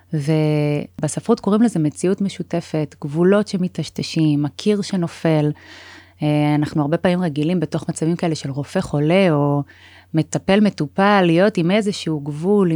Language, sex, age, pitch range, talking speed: Hebrew, female, 30-49, 145-185 Hz, 120 wpm